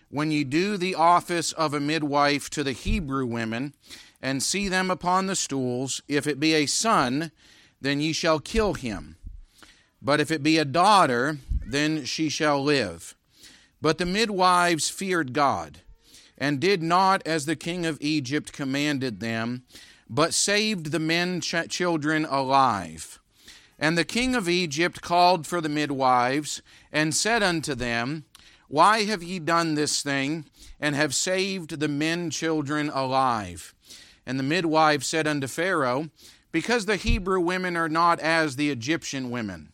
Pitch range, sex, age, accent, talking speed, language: 135-170 Hz, male, 40-59, American, 150 wpm, English